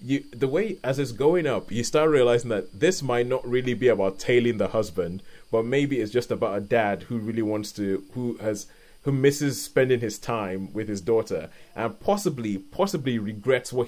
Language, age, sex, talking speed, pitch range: English, 30-49, male, 200 wpm, 110-140 Hz